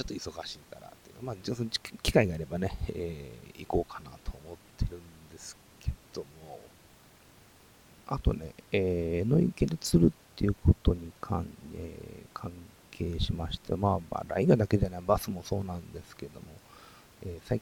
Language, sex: Japanese, male